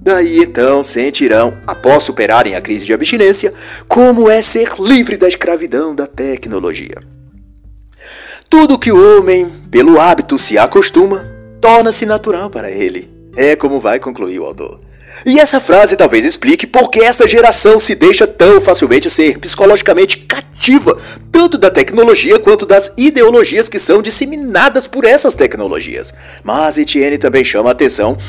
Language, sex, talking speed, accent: Portuguese, male, 145 wpm, Brazilian